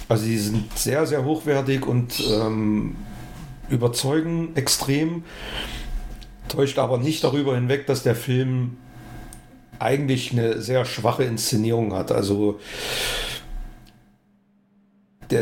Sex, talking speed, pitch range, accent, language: male, 100 wpm, 115-135 Hz, German, German